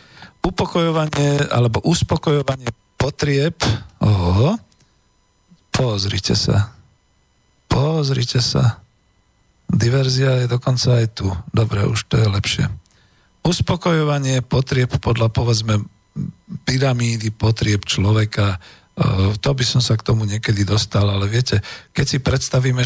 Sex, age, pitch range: male, 40-59, 110-135 Hz